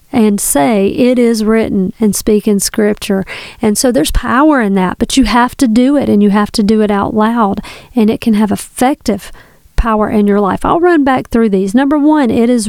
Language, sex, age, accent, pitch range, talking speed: English, female, 40-59, American, 220-275 Hz, 220 wpm